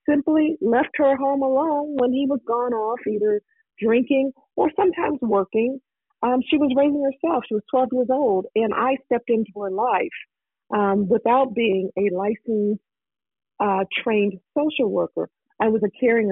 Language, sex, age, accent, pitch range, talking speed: English, female, 50-69, American, 195-250 Hz, 160 wpm